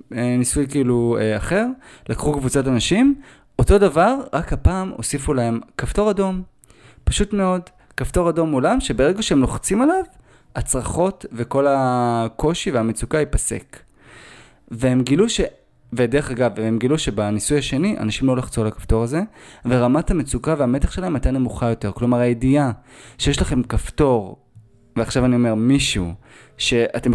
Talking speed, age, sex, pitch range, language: 135 wpm, 20-39, male, 115-145 Hz, Hebrew